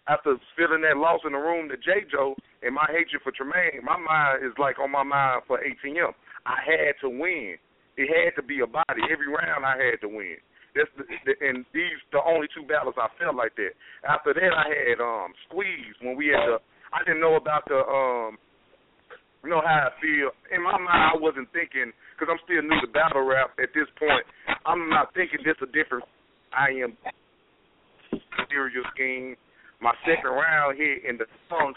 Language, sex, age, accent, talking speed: English, male, 40-59, American, 210 wpm